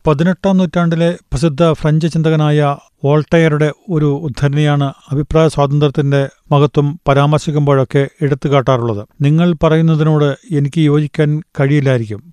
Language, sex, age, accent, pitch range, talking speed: Malayalam, male, 40-59, native, 140-155 Hz, 90 wpm